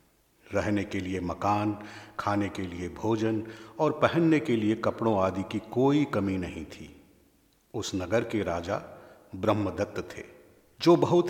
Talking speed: 145 wpm